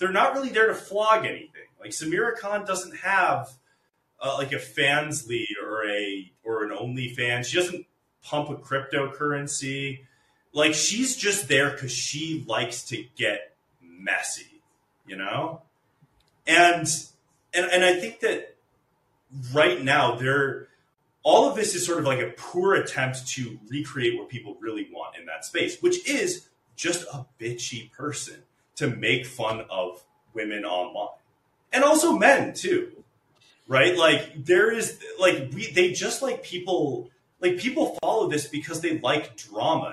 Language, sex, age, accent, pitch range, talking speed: English, male, 30-49, American, 125-180 Hz, 150 wpm